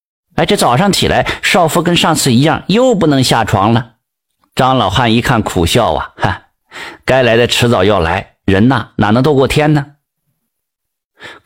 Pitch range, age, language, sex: 115-155 Hz, 50-69, Chinese, male